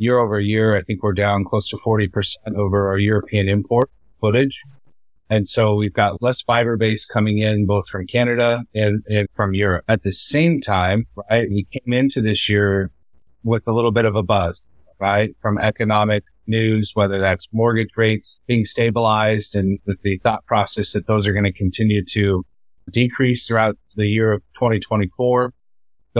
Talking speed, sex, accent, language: 175 wpm, male, American, English